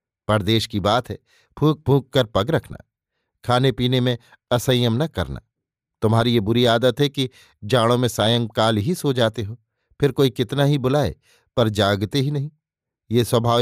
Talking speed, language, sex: 160 wpm, Hindi, male